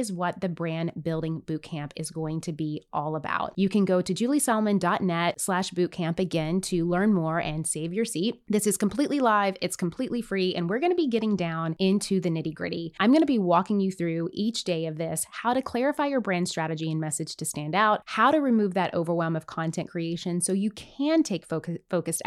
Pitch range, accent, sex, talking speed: 170-225 Hz, American, female, 215 wpm